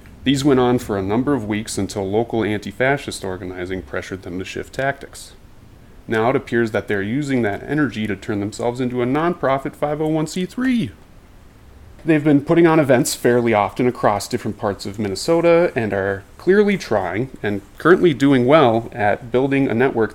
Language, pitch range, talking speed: English, 100-140 Hz, 170 wpm